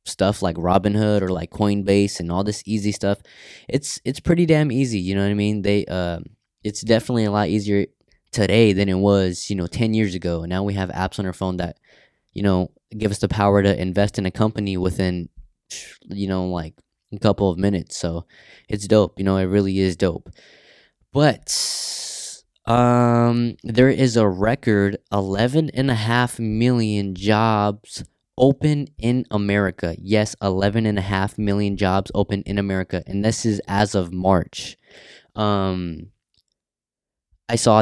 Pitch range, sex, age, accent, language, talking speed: 95-110 Hz, male, 20-39, American, English, 170 wpm